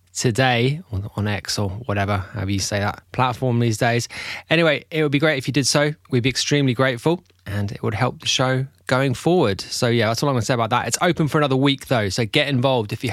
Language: English